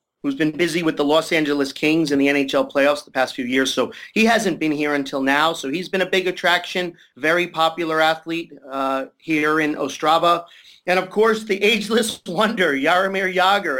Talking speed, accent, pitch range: 190 wpm, American, 140-175 Hz